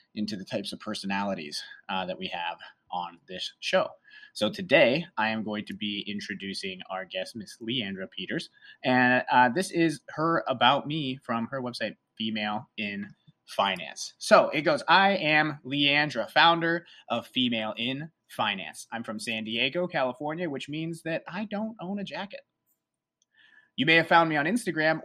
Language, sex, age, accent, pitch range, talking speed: English, male, 30-49, American, 120-175 Hz, 165 wpm